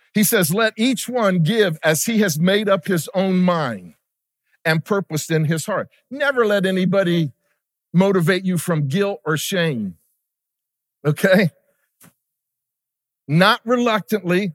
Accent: American